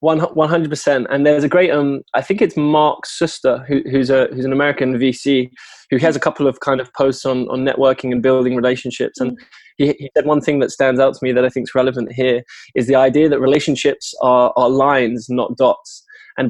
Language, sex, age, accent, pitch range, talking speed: English, male, 20-39, British, 130-145 Hz, 225 wpm